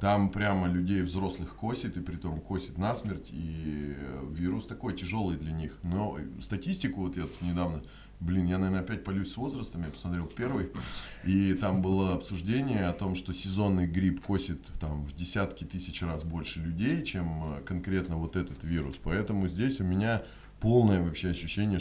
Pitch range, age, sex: 85-100 Hz, 30-49, male